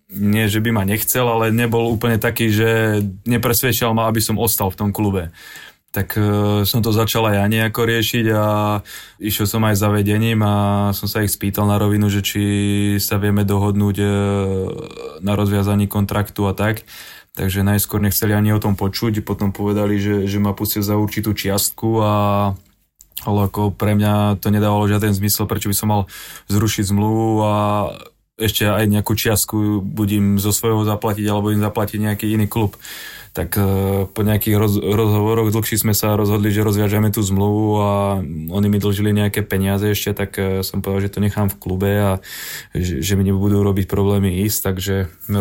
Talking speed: 170 wpm